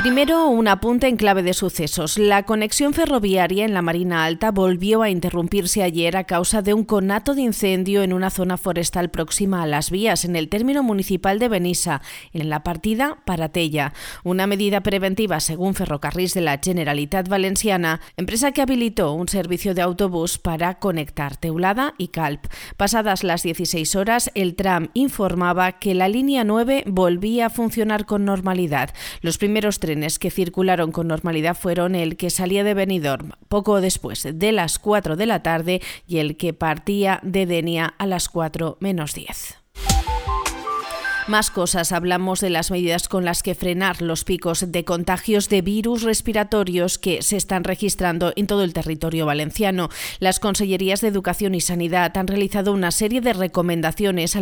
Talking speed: 170 wpm